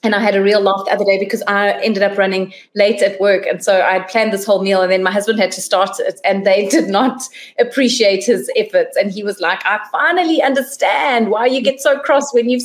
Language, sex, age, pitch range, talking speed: English, female, 30-49, 195-245 Hz, 255 wpm